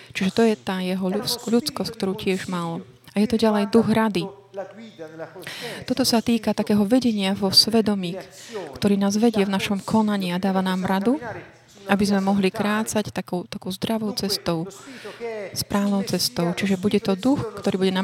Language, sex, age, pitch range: Slovak, female, 30-49, 185-220 Hz